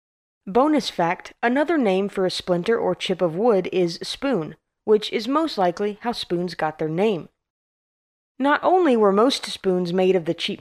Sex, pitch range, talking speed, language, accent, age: female, 180-250 Hz, 175 wpm, English, American, 20-39